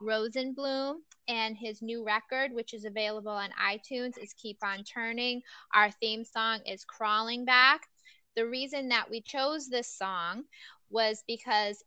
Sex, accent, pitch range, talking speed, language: female, American, 210-245 Hz, 145 wpm, English